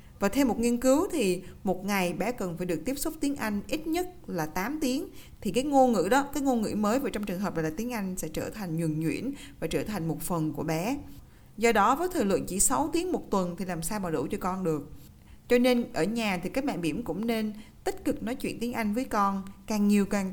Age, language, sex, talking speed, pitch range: 20-39, Vietnamese, female, 260 wpm, 185-255 Hz